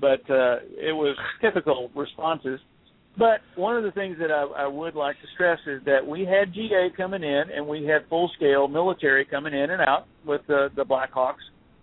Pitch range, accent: 135-160 Hz, American